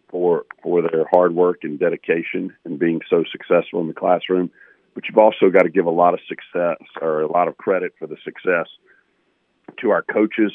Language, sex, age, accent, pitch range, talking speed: English, male, 50-69, American, 80-90 Hz, 200 wpm